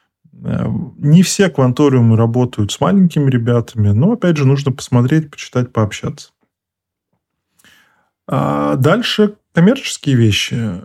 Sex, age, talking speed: male, 20-39, 95 wpm